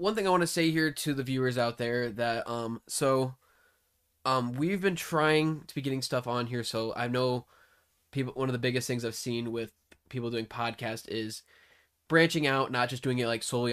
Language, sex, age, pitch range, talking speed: English, male, 10-29, 110-130 Hz, 215 wpm